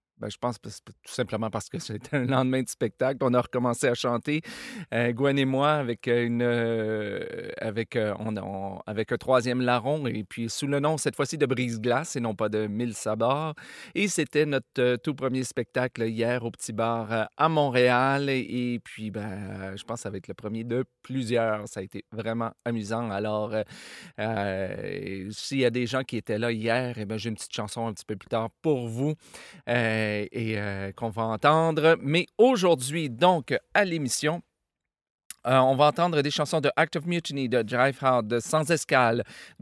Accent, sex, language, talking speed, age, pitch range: Canadian, male, French, 215 wpm, 40-59, 115-150 Hz